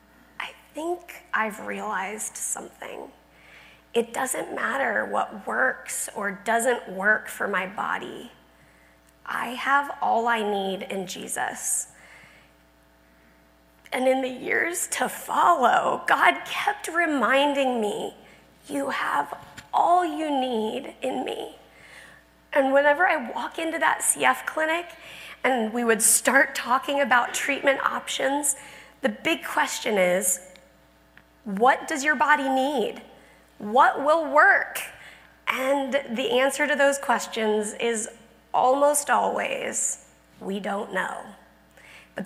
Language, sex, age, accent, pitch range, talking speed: English, female, 30-49, American, 205-300 Hz, 115 wpm